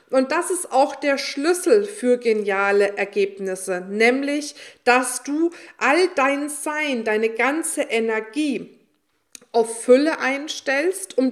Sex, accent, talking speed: female, German, 115 wpm